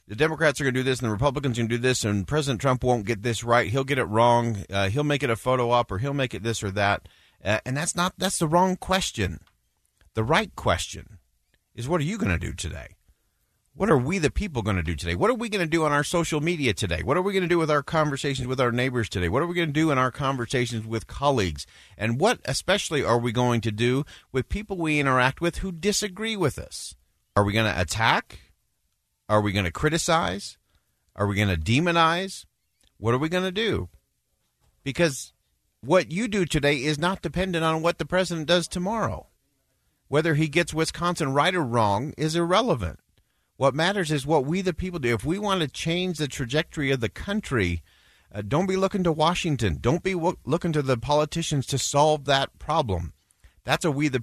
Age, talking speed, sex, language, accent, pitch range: 40-59, 225 wpm, male, English, American, 110-165 Hz